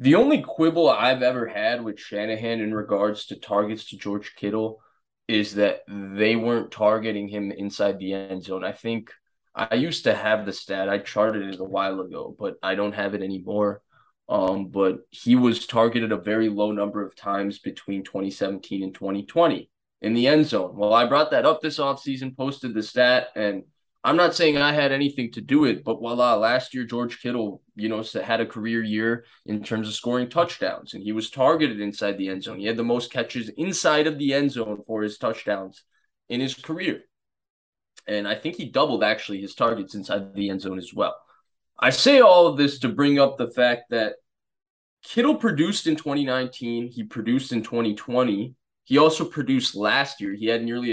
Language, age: English, 20-39